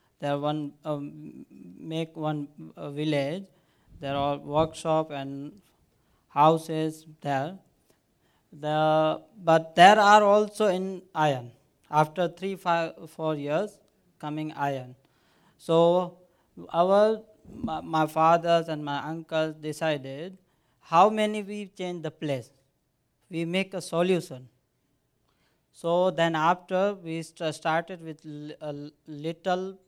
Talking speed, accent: 110 wpm, Indian